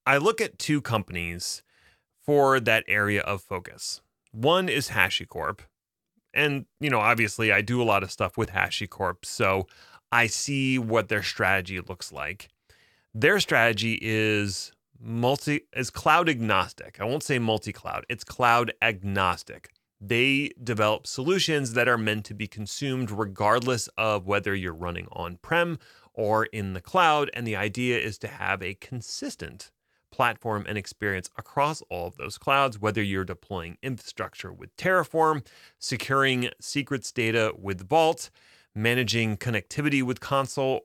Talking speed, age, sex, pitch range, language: 145 wpm, 30-49, male, 100-130 Hz, English